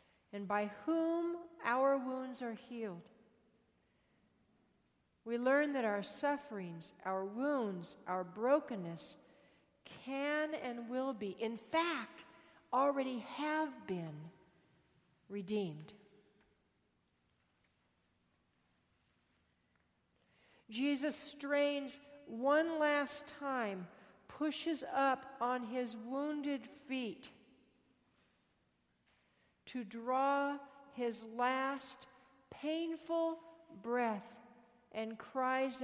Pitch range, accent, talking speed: 215-285 Hz, American, 75 wpm